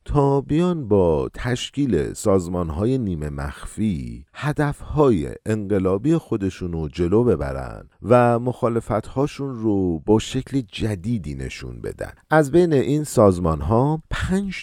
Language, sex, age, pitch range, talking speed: Persian, male, 50-69, 90-125 Hz, 120 wpm